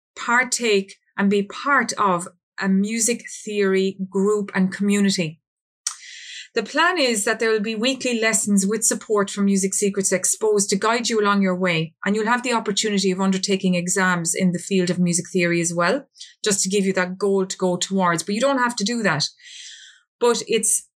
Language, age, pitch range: English, 30-49, 190-235 Hz